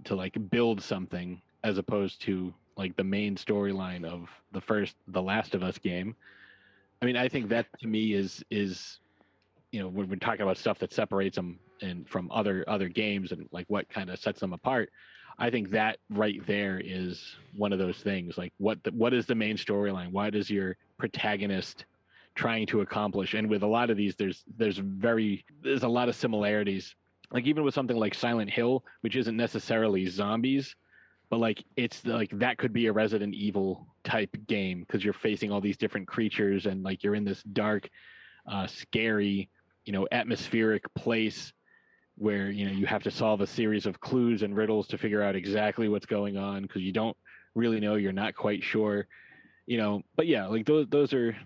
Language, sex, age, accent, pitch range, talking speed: English, male, 30-49, American, 95-110 Hz, 195 wpm